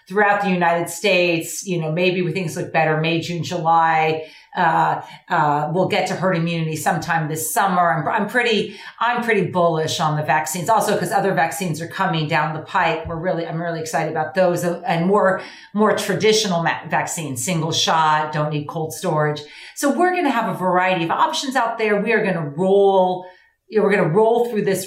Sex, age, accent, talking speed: female, 40-59, American, 200 wpm